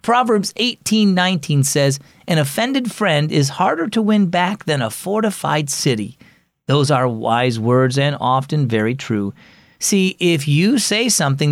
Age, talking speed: 40-59, 145 wpm